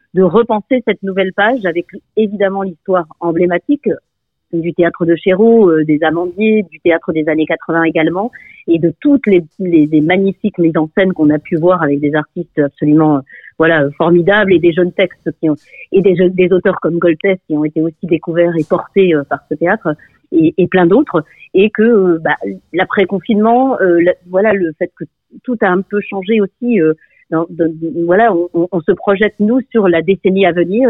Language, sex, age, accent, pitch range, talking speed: French, female, 40-59, French, 165-205 Hz, 195 wpm